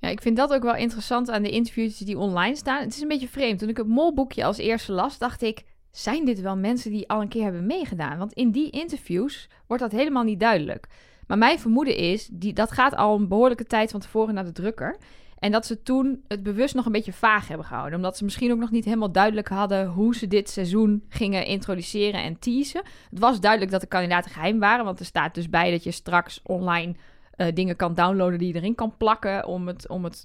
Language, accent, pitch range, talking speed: Dutch, Dutch, 195-235 Hz, 235 wpm